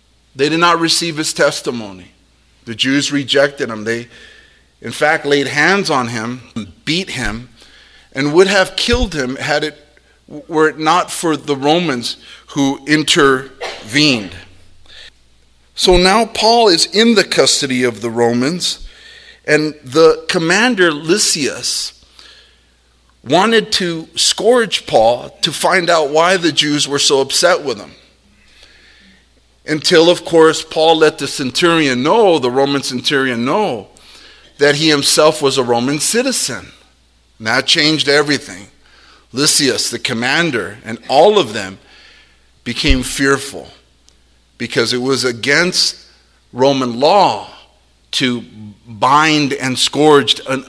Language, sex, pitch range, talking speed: English, male, 115-160 Hz, 125 wpm